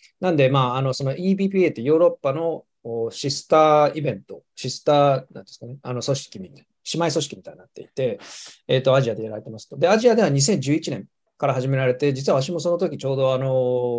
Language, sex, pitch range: Japanese, male, 125-150 Hz